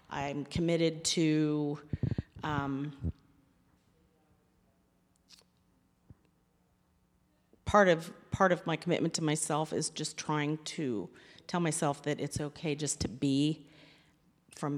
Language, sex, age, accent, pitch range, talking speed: English, female, 40-59, American, 135-155 Hz, 100 wpm